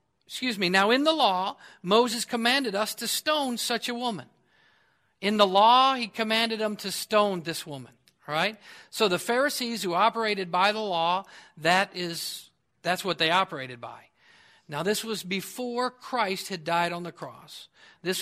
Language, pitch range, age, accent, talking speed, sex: English, 165-220 Hz, 50-69, American, 170 wpm, male